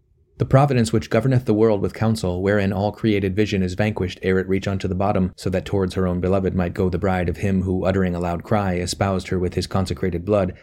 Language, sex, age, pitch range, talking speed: English, male, 30-49, 90-110 Hz, 245 wpm